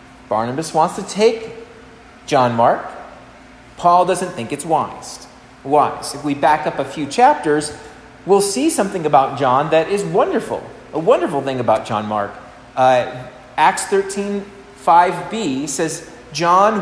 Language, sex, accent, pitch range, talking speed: English, male, American, 135-195 Hz, 140 wpm